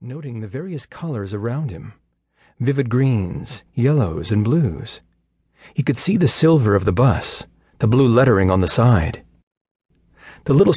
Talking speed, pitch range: 150 wpm, 100-130 Hz